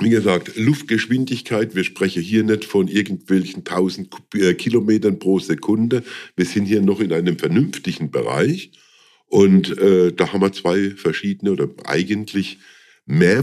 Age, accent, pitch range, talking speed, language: 50-69, German, 85-110 Hz, 140 wpm, German